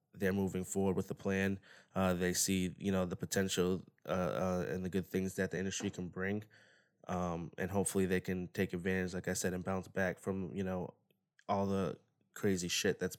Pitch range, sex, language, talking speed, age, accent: 90-100 Hz, male, English, 205 wpm, 20-39, American